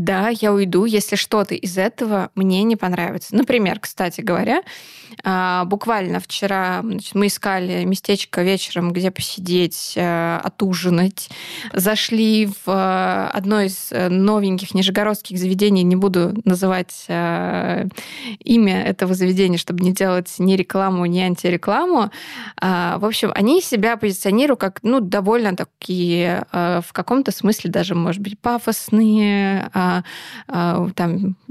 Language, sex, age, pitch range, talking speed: Russian, female, 20-39, 185-225 Hz, 110 wpm